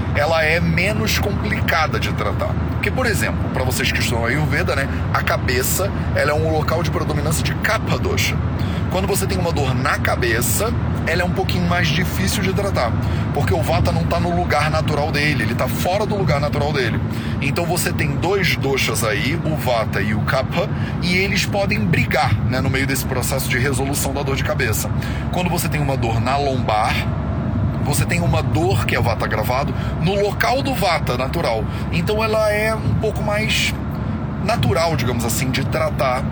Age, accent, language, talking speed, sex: 30-49, Brazilian, Portuguese, 195 wpm, male